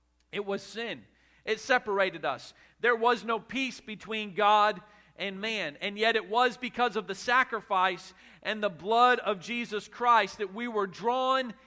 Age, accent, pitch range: 40-59, American, 205-240 Hz